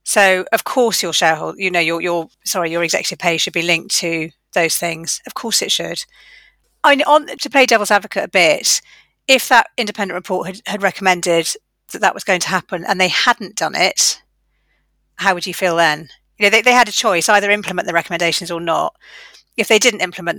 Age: 40-59